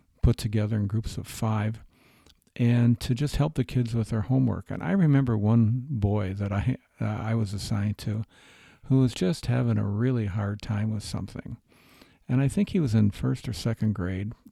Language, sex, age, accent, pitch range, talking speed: English, male, 50-69, American, 105-125 Hz, 195 wpm